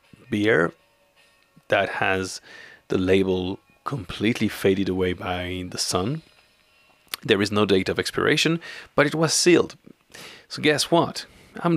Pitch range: 90-125 Hz